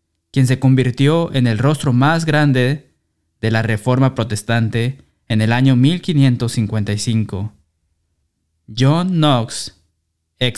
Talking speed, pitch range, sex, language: 110 wpm, 105-135 Hz, male, Spanish